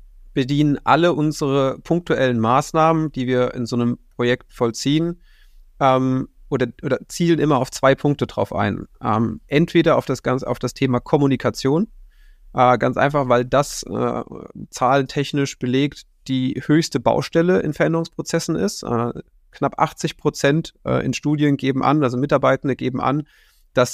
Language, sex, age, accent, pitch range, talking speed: German, male, 30-49, German, 130-155 Hz, 145 wpm